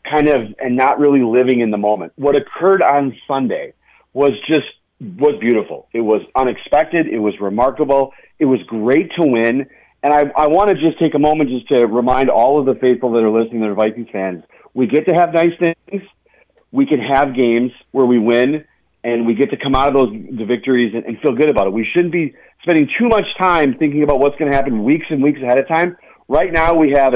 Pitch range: 125-160 Hz